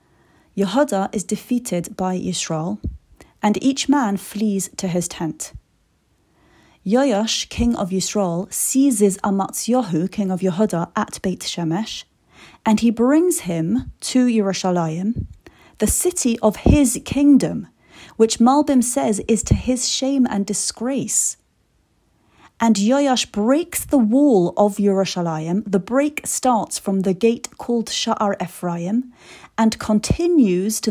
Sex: female